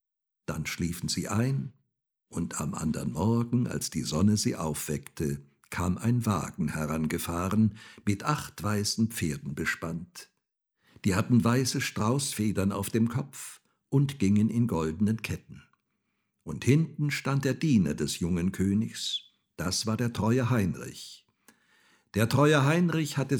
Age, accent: 60-79, German